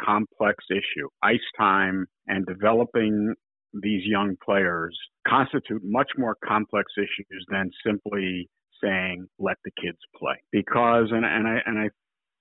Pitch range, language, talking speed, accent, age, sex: 100-115 Hz, English, 125 wpm, American, 50-69, male